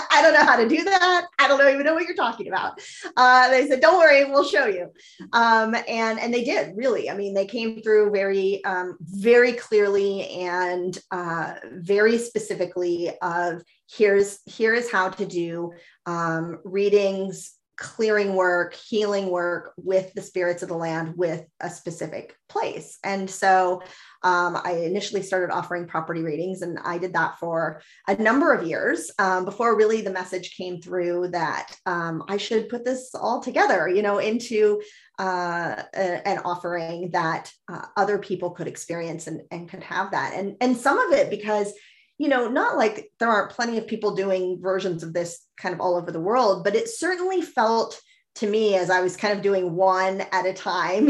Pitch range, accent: 180-235 Hz, American